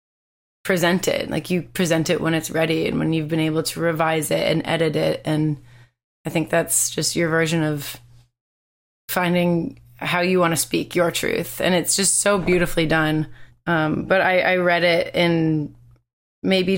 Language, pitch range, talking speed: English, 155-180 Hz, 180 wpm